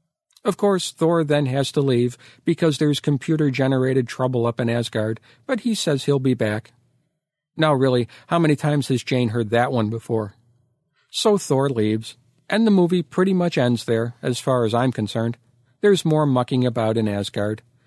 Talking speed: 175 wpm